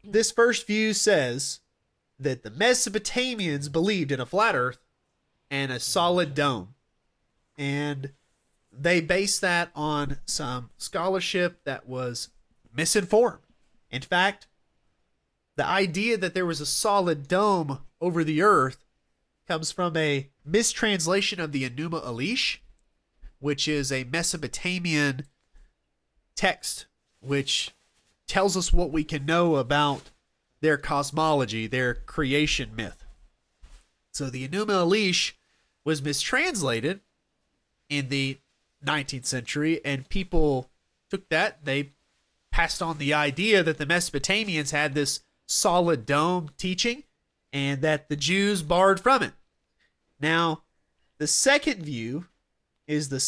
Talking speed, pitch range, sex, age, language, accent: 120 wpm, 135-185 Hz, male, 30-49, English, American